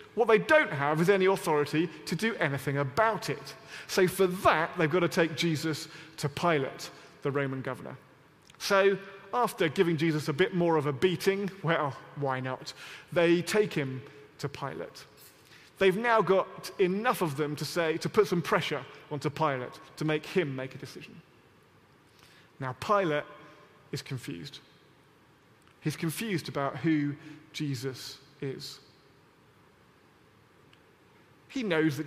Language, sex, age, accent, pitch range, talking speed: English, male, 30-49, British, 140-185 Hz, 140 wpm